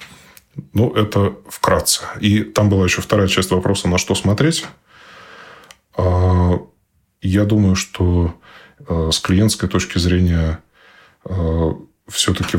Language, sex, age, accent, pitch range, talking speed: Russian, male, 20-39, native, 80-95 Hz, 100 wpm